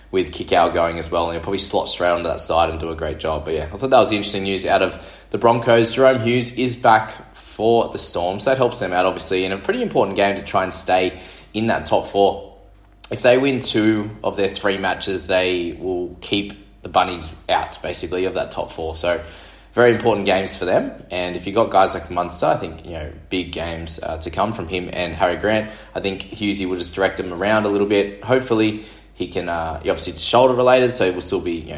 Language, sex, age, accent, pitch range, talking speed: English, male, 20-39, Australian, 85-105 Hz, 245 wpm